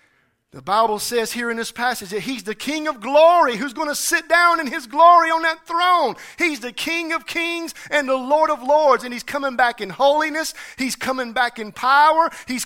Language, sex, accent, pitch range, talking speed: English, male, American, 245-315 Hz, 220 wpm